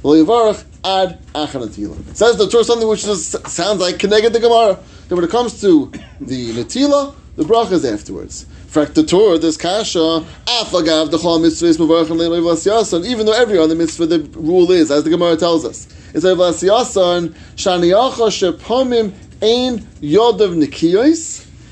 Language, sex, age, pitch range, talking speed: English, male, 30-49, 155-230 Hz, 110 wpm